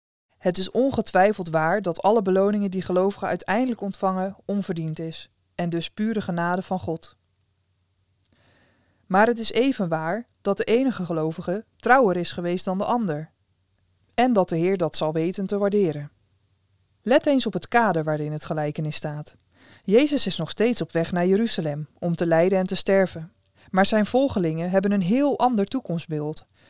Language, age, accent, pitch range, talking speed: Dutch, 20-39, Dutch, 165-210 Hz, 165 wpm